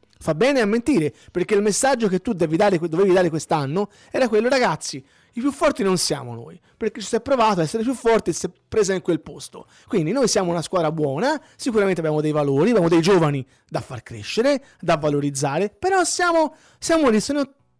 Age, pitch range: 30-49, 160-235 Hz